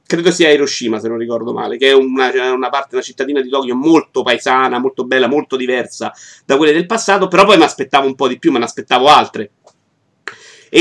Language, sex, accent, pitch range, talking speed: Italian, male, native, 125-160 Hz, 215 wpm